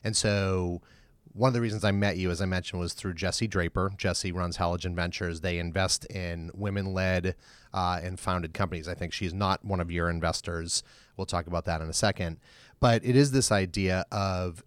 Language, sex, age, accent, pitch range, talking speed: English, male, 30-49, American, 90-110 Hz, 195 wpm